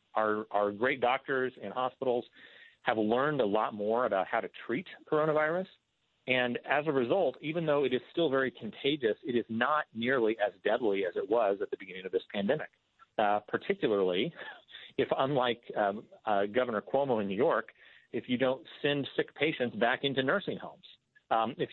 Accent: American